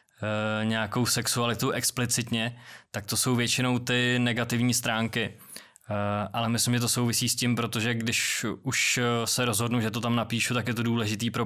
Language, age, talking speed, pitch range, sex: Czech, 20-39, 160 wpm, 110-120 Hz, male